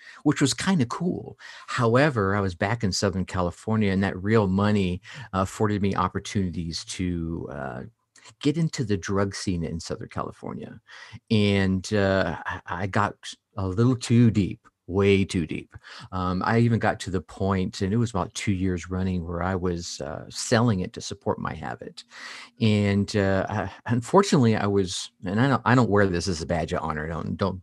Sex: male